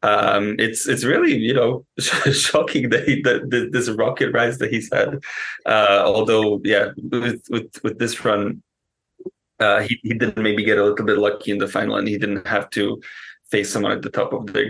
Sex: male